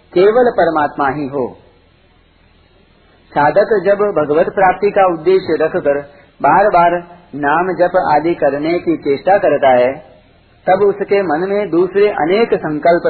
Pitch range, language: 140-185 Hz, Hindi